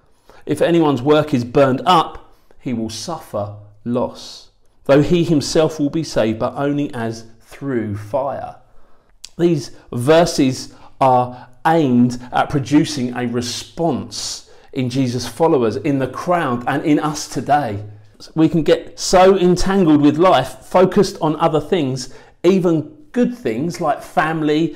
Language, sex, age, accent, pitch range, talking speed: English, male, 40-59, British, 125-175 Hz, 135 wpm